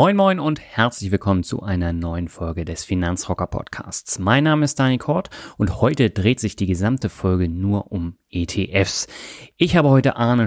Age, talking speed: 30-49, 170 wpm